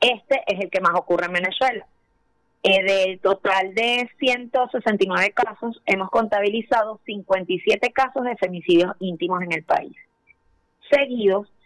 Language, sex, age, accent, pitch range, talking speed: Spanish, female, 30-49, American, 195-245 Hz, 130 wpm